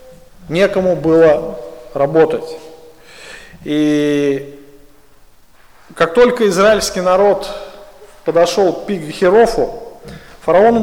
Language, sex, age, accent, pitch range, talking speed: Russian, male, 40-59, native, 160-205 Hz, 65 wpm